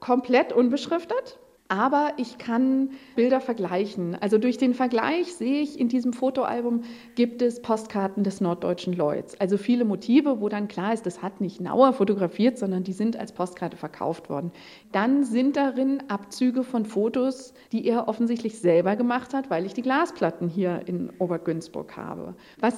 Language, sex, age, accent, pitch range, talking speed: German, female, 50-69, German, 210-270 Hz, 165 wpm